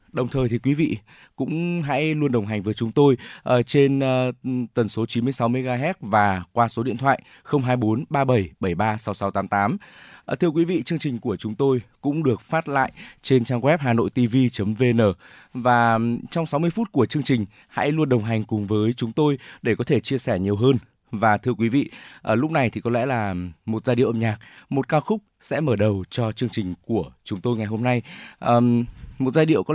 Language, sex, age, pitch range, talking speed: Vietnamese, male, 20-39, 110-140 Hz, 235 wpm